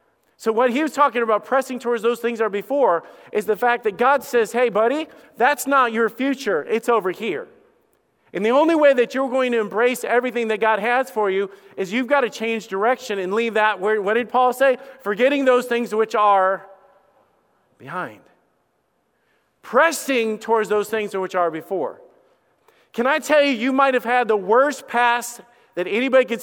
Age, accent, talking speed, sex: 40-59, American, 190 wpm, male